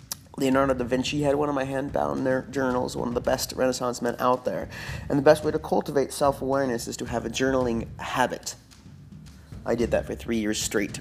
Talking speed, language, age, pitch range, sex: 205 wpm, English, 30-49, 100-130 Hz, male